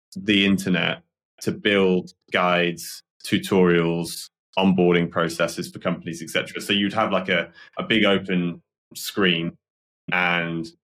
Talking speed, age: 115 wpm, 20-39